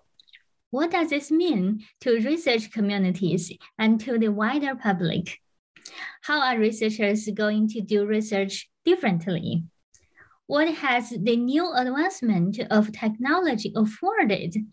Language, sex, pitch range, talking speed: English, female, 205-275 Hz, 115 wpm